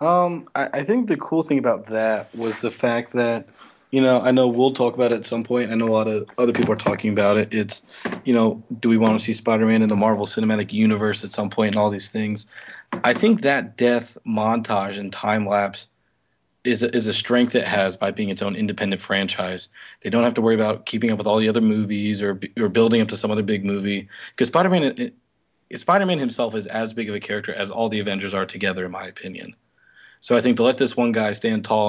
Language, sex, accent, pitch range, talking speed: English, male, American, 105-115 Hz, 240 wpm